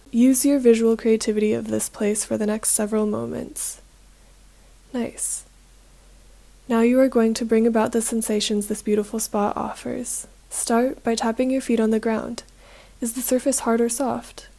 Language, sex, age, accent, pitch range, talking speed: English, female, 20-39, American, 220-250 Hz, 165 wpm